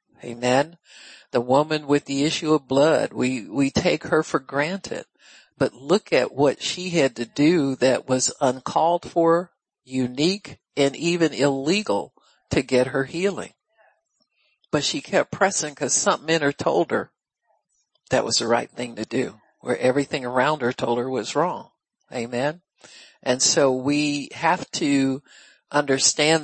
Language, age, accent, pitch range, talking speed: English, 60-79, American, 130-155 Hz, 150 wpm